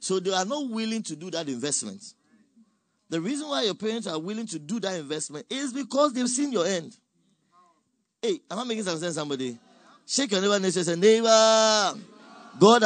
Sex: male